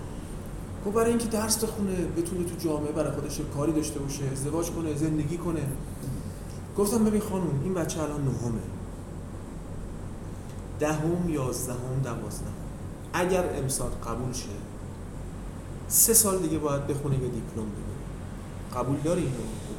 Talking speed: 125 wpm